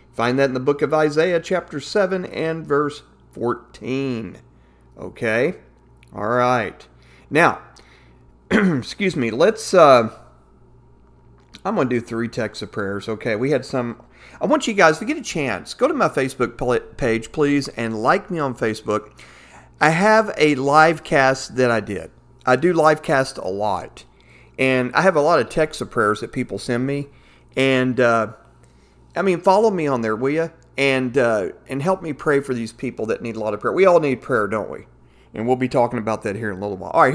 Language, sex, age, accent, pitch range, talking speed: English, male, 40-59, American, 115-145 Hz, 195 wpm